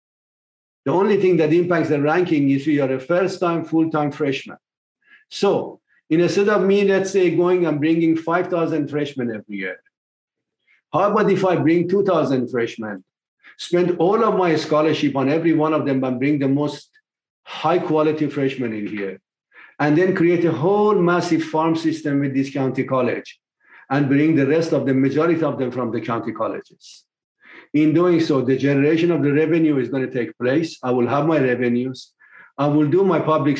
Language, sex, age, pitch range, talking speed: English, male, 50-69, 135-170 Hz, 175 wpm